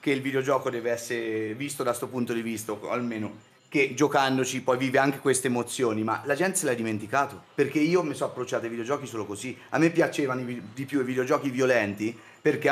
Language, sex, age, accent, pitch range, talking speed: Italian, male, 30-49, native, 110-140 Hz, 210 wpm